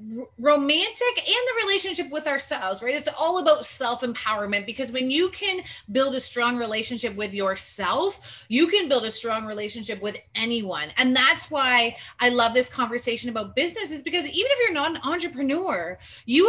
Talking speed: 165 wpm